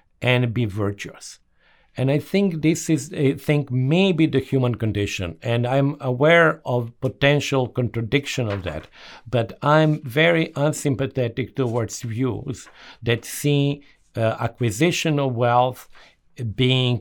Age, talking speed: 50-69, 125 wpm